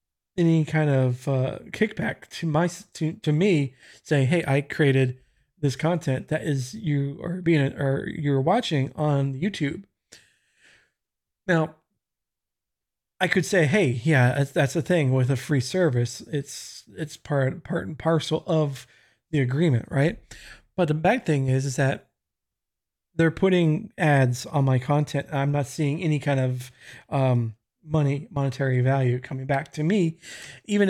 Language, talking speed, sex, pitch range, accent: English, 150 wpm, male, 130-165 Hz, American